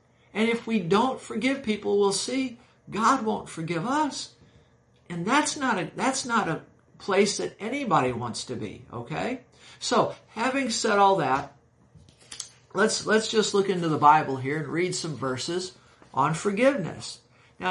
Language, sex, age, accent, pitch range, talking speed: English, male, 60-79, American, 140-195 Hz, 155 wpm